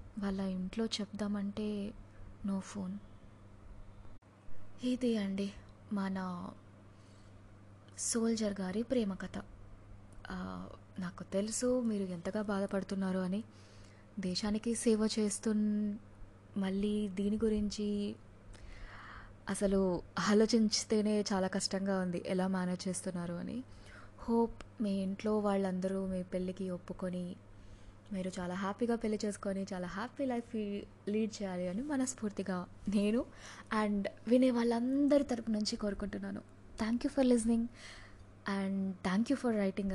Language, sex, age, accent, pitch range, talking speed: Telugu, female, 20-39, native, 175-215 Hz, 100 wpm